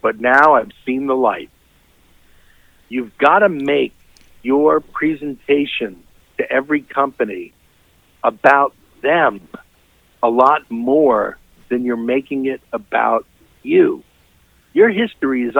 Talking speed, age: 110 wpm, 50-69